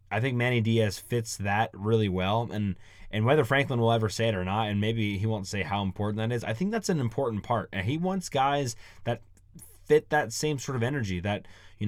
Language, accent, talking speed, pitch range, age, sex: English, American, 235 wpm, 100-135 Hz, 20-39, male